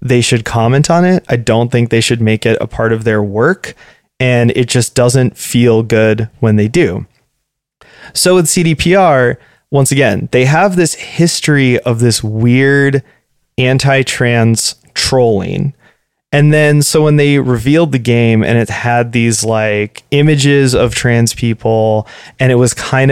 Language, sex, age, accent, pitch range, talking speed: English, male, 20-39, American, 115-140 Hz, 160 wpm